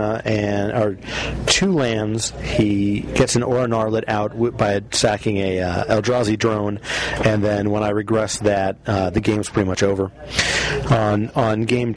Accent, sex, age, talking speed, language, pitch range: American, male, 40-59, 155 wpm, English, 100-115 Hz